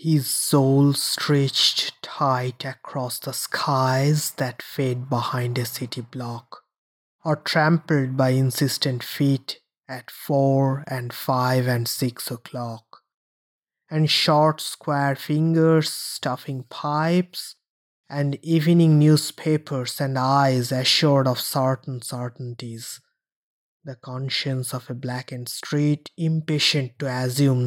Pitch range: 125-150 Hz